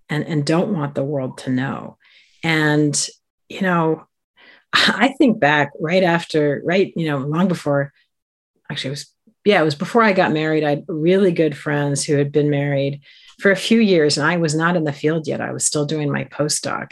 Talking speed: 205 wpm